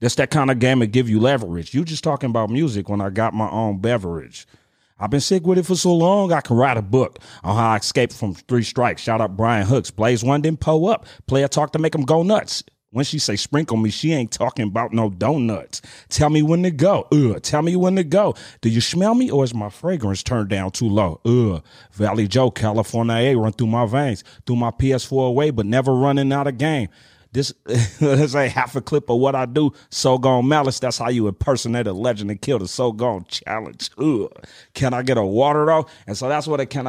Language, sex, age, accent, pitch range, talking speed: English, male, 30-49, American, 115-145 Hz, 240 wpm